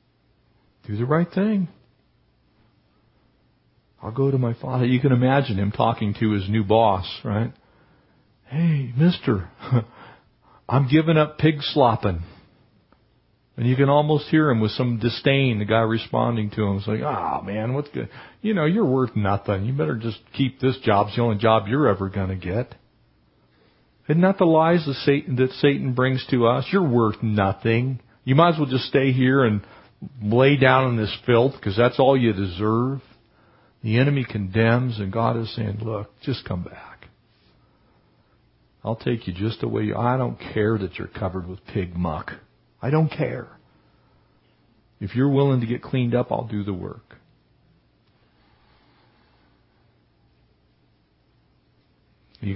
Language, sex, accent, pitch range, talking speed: English, male, American, 105-130 Hz, 160 wpm